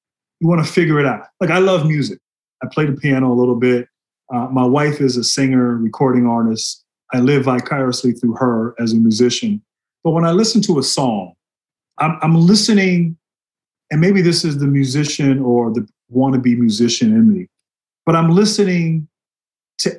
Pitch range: 130-180 Hz